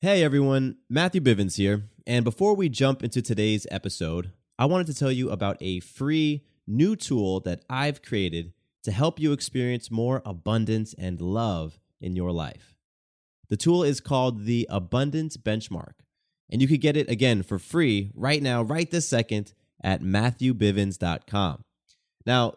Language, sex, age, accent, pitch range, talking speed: English, male, 30-49, American, 100-140 Hz, 155 wpm